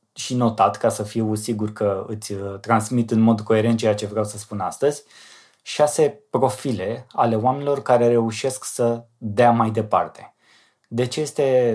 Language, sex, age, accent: Romanian, male, 20-39, native